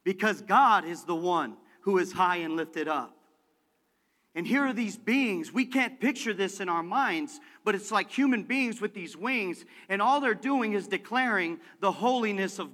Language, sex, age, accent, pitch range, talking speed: English, male, 40-59, American, 165-245 Hz, 190 wpm